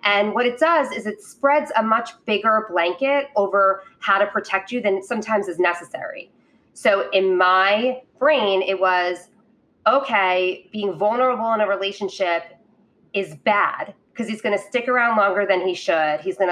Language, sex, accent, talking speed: English, female, American, 165 wpm